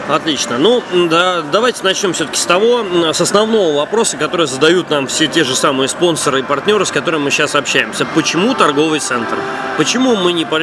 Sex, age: male, 20-39